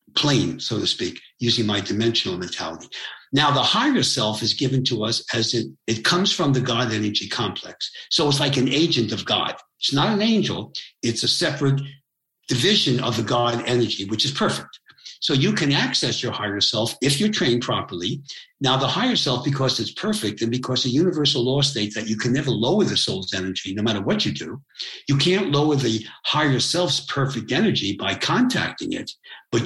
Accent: American